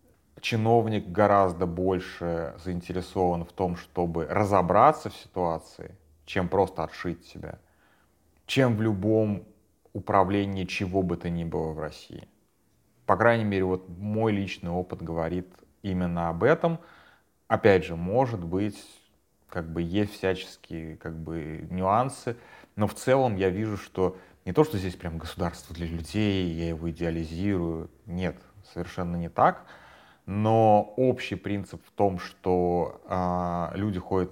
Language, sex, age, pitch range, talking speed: Russian, male, 30-49, 85-105 Hz, 130 wpm